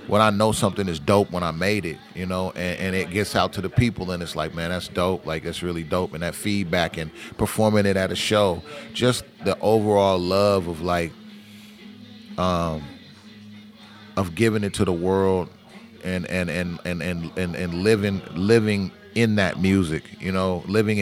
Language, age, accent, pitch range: English, 30-49, American, 90-105 Hz